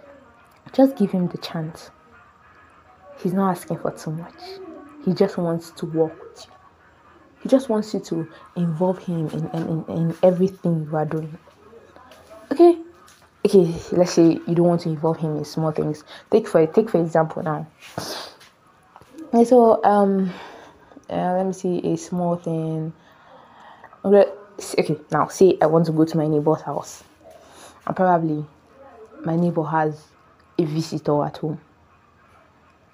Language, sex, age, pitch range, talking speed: English, female, 20-39, 160-190 Hz, 150 wpm